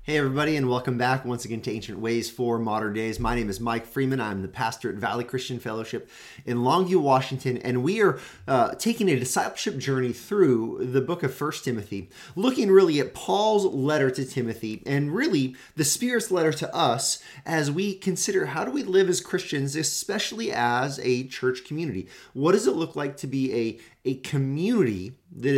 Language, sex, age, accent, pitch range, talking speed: English, male, 30-49, American, 125-170 Hz, 190 wpm